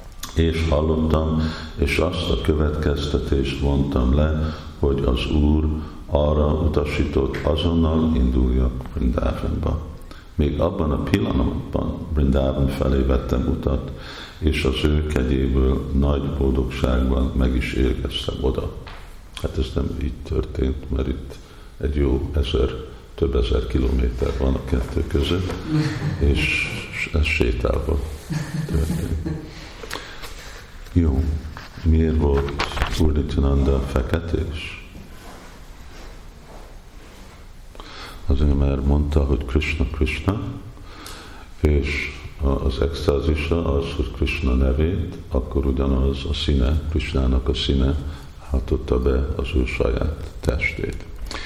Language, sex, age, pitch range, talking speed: Hungarian, male, 50-69, 70-85 Hz, 100 wpm